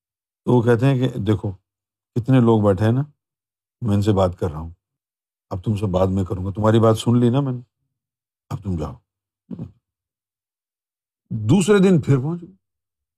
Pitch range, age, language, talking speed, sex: 105-150 Hz, 50-69, Urdu, 180 wpm, male